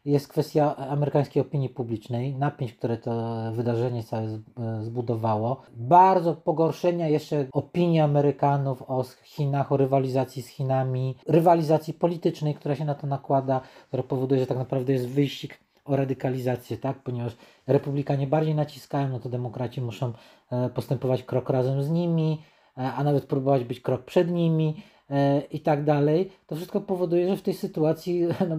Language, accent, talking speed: Polish, native, 145 wpm